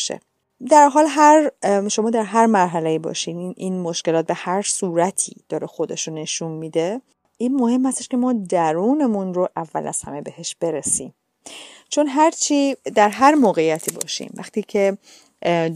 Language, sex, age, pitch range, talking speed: Persian, female, 30-49, 160-225 Hz, 140 wpm